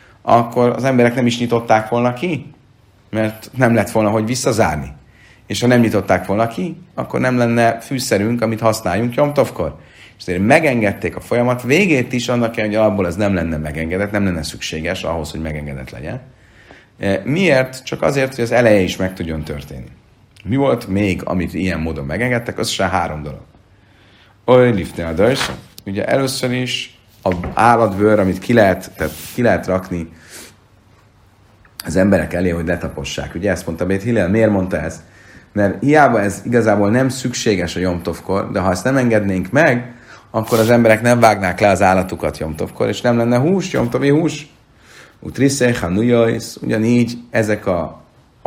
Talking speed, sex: 155 wpm, male